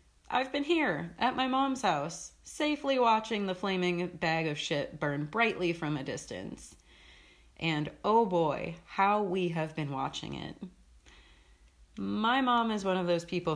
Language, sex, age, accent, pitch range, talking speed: English, female, 30-49, American, 140-200 Hz, 155 wpm